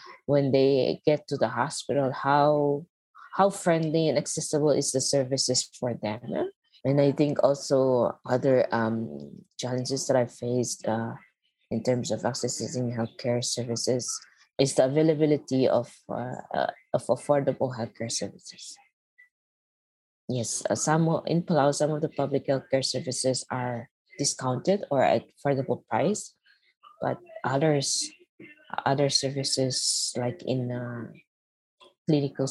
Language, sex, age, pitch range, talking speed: English, female, 20-39, 125-145 Hz, 130 wpm